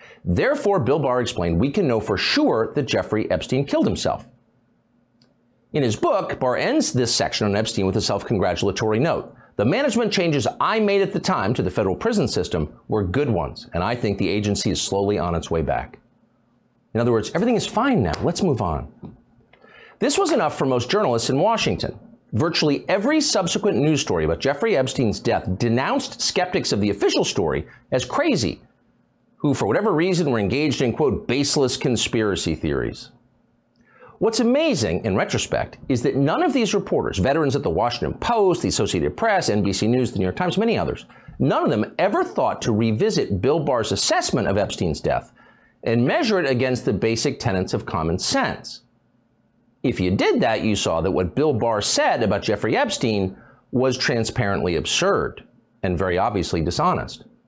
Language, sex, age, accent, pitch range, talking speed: English, male, 50-69, American, 105-175 Hz, 175 wpm